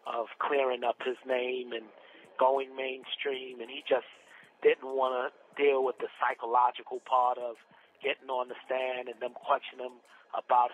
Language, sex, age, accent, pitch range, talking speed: English, male, 40-59, American, 125-145 Hz, 160 wpm